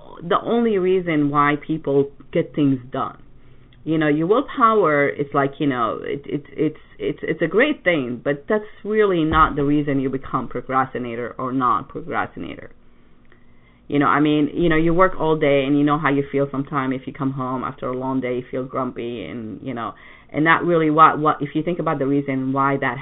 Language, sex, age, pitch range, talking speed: English, female, 30-49, 135-165 Hz, 210 wpm